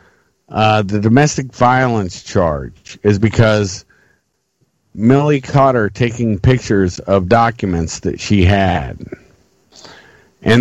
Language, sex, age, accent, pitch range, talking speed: English, male, 50-69, American, 100-120 Hz, 100 wpm